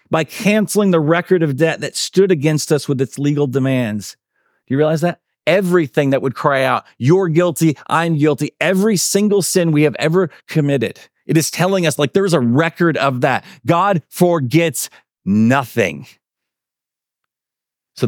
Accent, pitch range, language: American, 115-155 Hz, English